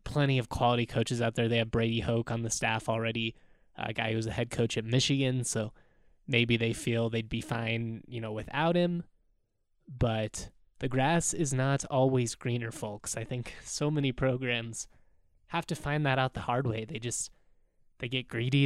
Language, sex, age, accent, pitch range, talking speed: English, male, 20-39, American, 115-130 Hz, 190 wpm